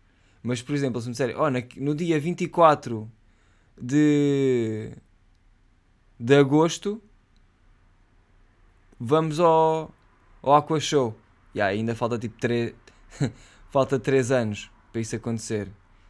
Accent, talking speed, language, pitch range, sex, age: Portuguese, 110 wpm, Portuguese, 95-130 Hz, male, 20-39